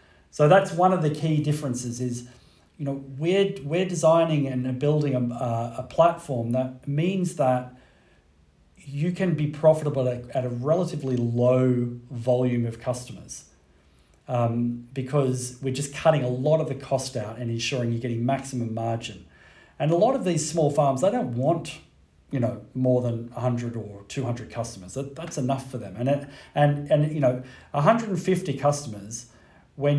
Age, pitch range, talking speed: 40-59, 120-150 Hz, 165 wpm